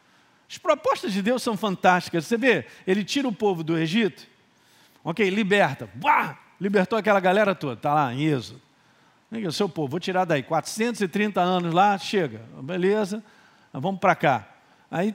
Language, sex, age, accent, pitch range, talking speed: Portuguese, male, 50-69, Brazilian, 155-215 Hz, 160 wpm